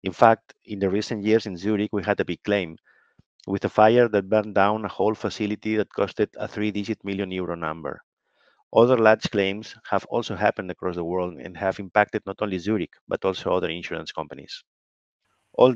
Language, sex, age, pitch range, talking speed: English, male, 50-69, 95-110 Hz, 195 wpm